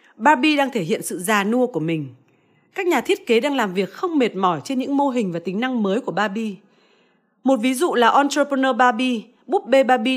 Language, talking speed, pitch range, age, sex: Vietnamese, 225 wpm, 210-270 Hz, 20-39, female